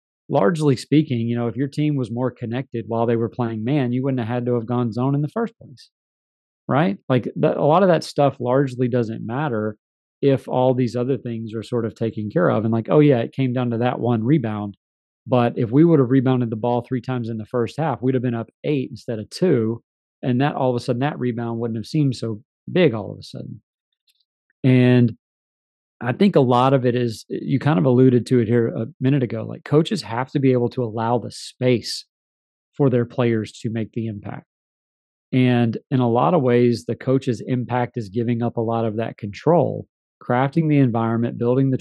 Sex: male